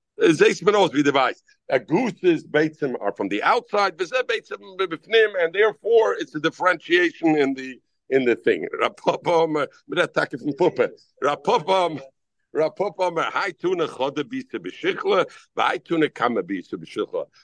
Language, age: English, 60-79